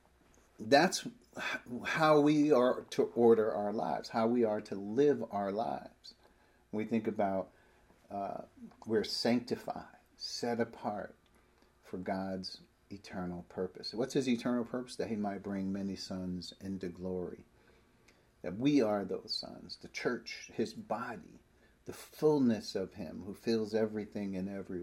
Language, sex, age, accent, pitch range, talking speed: English, male, 50-69, American, 95-140 Hz, 140 wpm